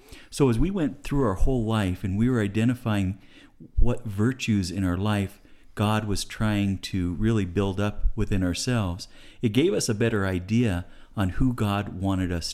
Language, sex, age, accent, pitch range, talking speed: English, male, 50-69, American, 95-120 Hz, 175 wpm